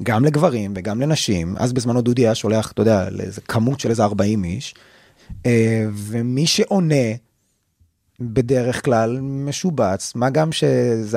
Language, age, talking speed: Hebrew, 30-49, 130 wpm